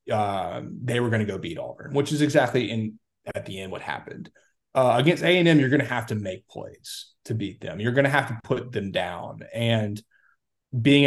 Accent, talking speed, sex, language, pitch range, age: American, 230 wpm, male, English, 110-130 Hz, 30-49